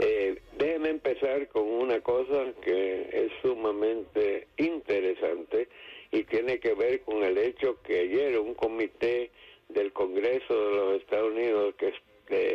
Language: English